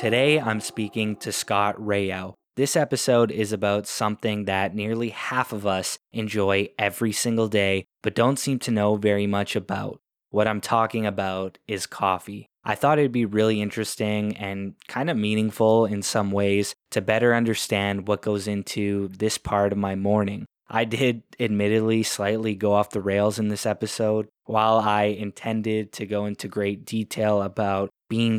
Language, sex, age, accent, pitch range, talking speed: English, male, 20-39, American, 100-110 Hz, 165 wpm